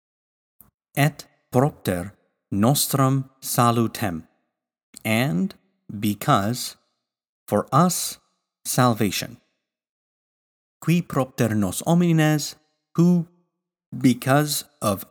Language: English